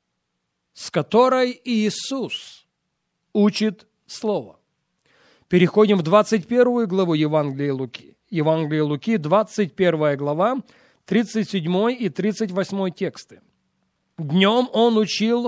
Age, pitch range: 40-59, 170-235 Hz